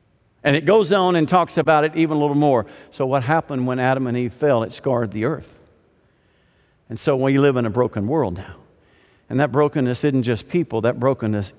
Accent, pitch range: American, 115-170 Hz